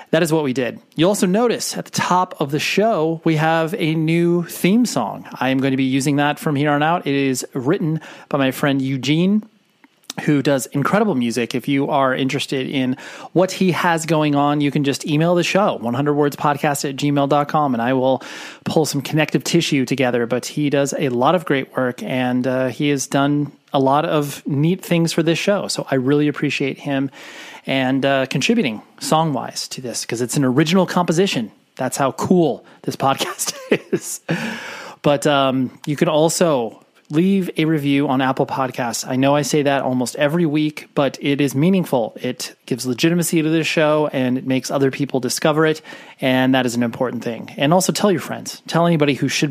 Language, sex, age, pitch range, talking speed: English, male, 30-49, 135-165 Hz, 200 wpm